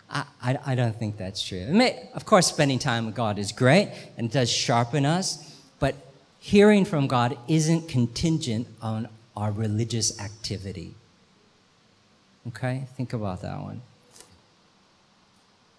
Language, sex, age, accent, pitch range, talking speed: English, male, 40-59, American, 110-135 Hz, 125 wpm